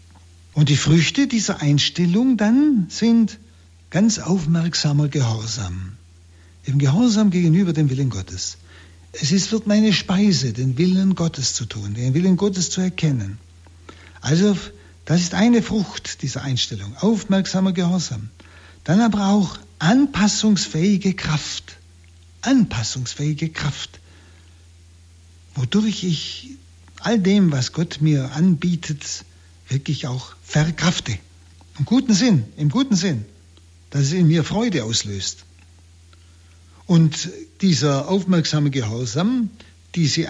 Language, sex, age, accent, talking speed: German, male, 60-79, German, 110 wpm